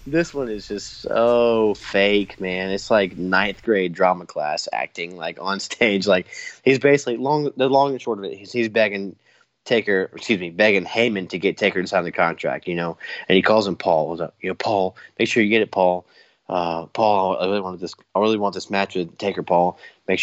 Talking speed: 215 wpm